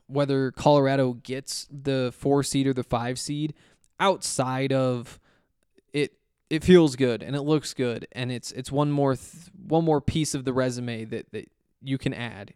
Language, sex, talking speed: English, male, 170 wpm